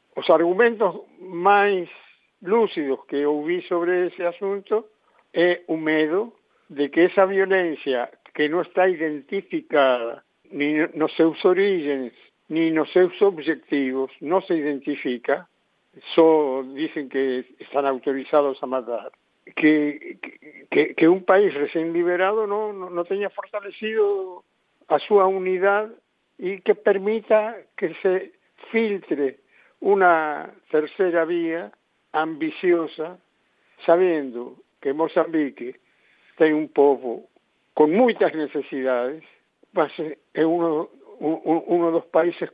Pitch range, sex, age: 145-190 Hz, male, 60-79